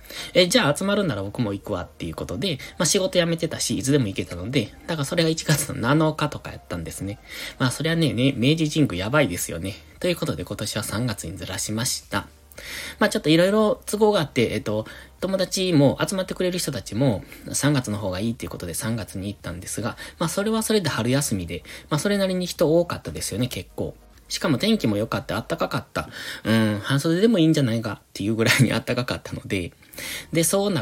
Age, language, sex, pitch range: 20-39, Japanese, male, 100-155 Hz